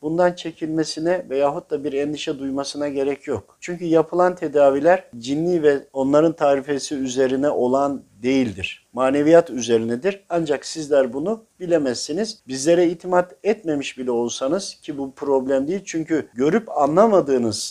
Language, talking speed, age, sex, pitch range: Turkish, 125 wpm, 50-69, male, 130-175 Hz